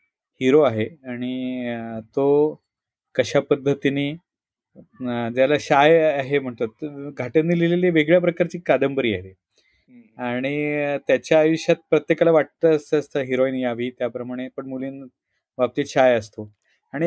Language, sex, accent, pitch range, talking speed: Marathi, male, native, 125-165 Hz, 70 wpm